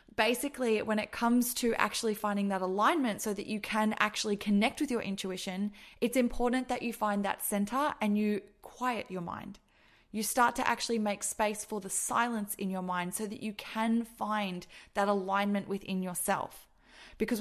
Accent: Australian